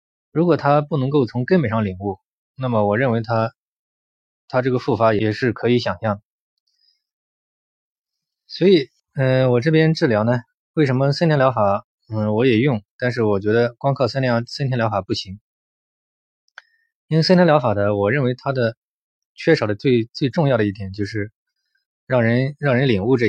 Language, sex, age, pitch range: Chinese, male, 20-39, 105-140 Hz